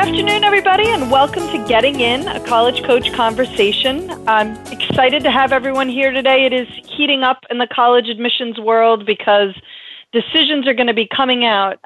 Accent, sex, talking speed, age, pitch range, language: American, female, 180 wpm, 30-49, 210-270 Hz, English